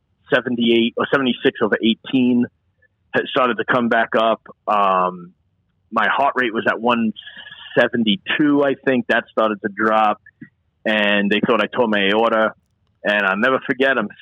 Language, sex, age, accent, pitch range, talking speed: English, male, 40-59, American, 110-145 Hz, 170 wpm